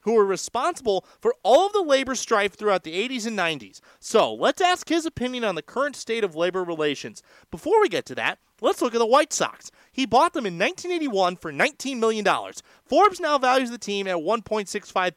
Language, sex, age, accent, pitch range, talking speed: English, male, 30-49, American, 170-245 Hz, 205 wpm